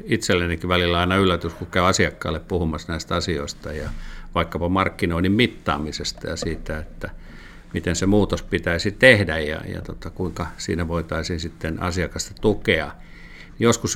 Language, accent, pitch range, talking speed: Finnish, native, 80-95 Hz, 140 wpm